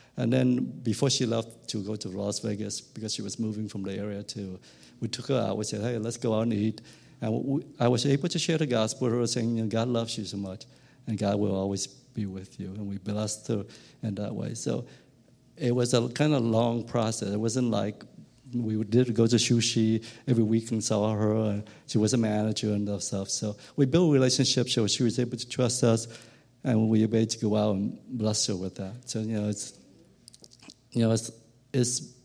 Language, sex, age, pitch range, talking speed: English, male, 50-69, 105-125 Hz, 225 wpm